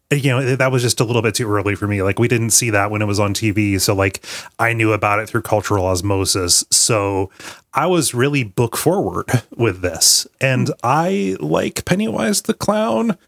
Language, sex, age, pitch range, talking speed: English, male, 30-49, 115-155 Hz, 205 wpm